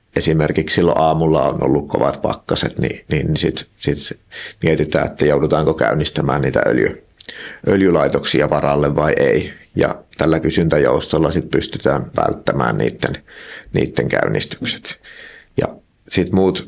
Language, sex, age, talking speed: Finnish, male, 30-49, 120 wpm